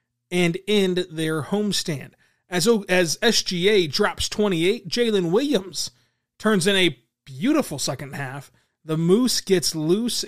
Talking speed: 125 wpm